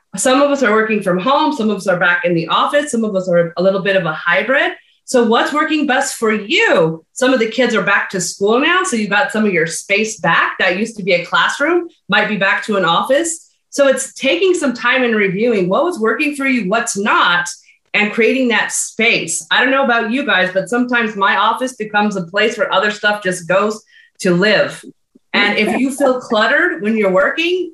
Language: English